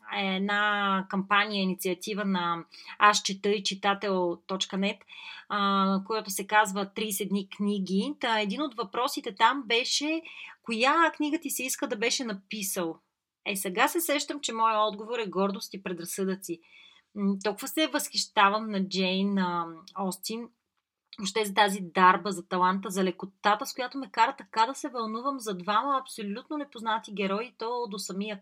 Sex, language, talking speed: female, Bulgarian, 140 wpm